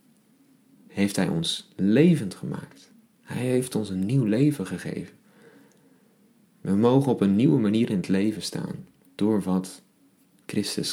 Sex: male